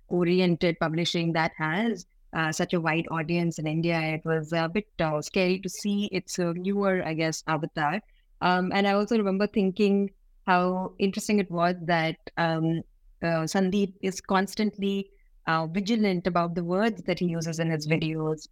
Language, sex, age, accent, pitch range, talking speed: English, female, 20-39, Indian, 165-210 Hz, 170 wpm